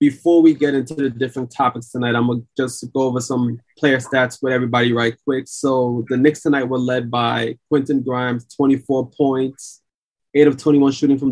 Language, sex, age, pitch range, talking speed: English, male, 20-39, 135-155 Hz, 195 wpm